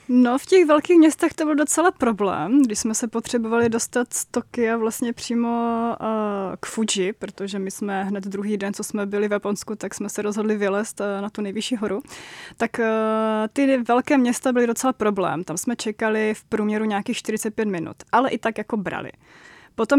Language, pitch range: Czech, 205-245 Hz